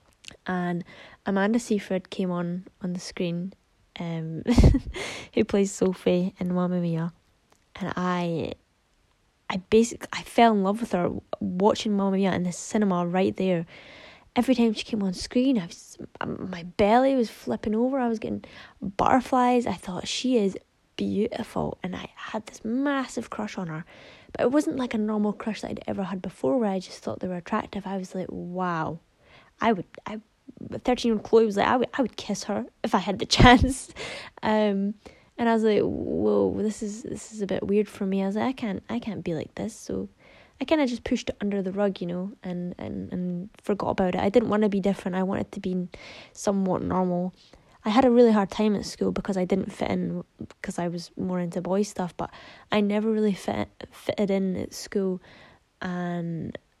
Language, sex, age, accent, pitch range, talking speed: English, female, 10-29, British, 180-220 Hz, 205 wpm